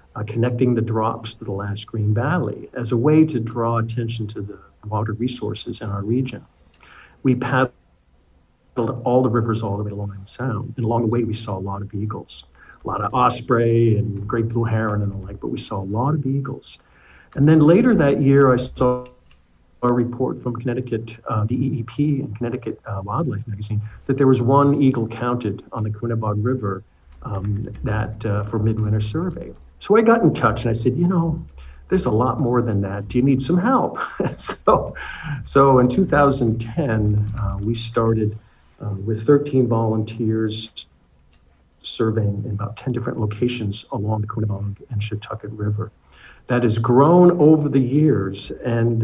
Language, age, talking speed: English, 50-69, 180 wpm